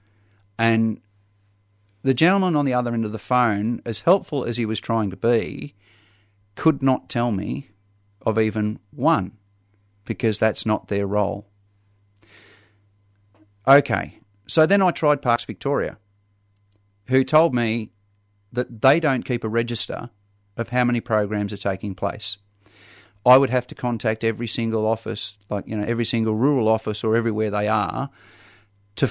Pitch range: 100-120 Hz